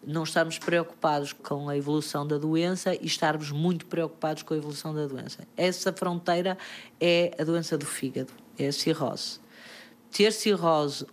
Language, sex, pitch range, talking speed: Portuguese, female, 150-195 Hz, 155 wpm